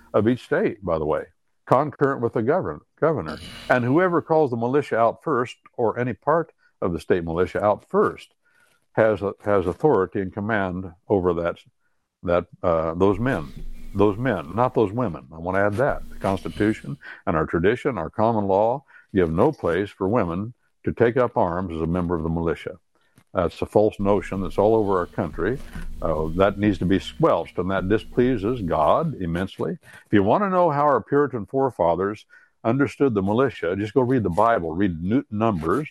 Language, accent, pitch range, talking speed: English, American, 90-120 Hz, 185 wpm